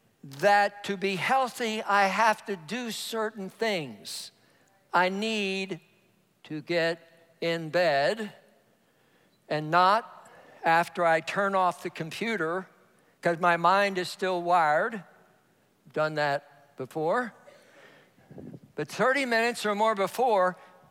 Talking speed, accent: 110 wpm, American